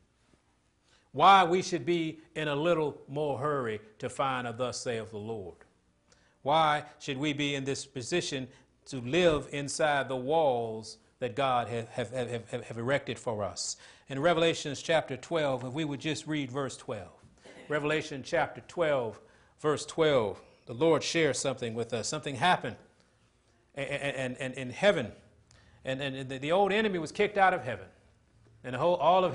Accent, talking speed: American, 160 wpm